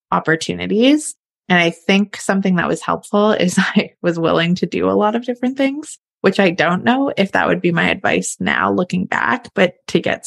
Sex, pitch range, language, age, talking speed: female, 165-210 Hz, English, 20-39, 205 wpm